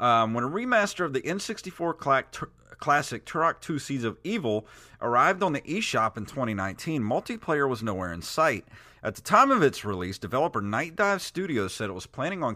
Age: 40-59